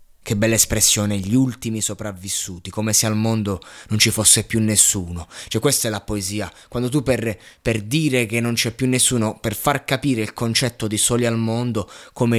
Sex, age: male, 20-39